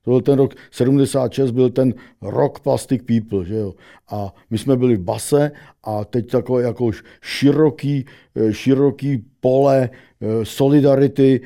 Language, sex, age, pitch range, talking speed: Czech, male, 60-79, 125-165 Hz, 130 wpm